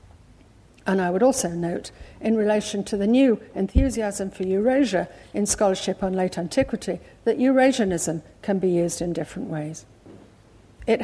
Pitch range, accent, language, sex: 170-220 Hz, British, English, female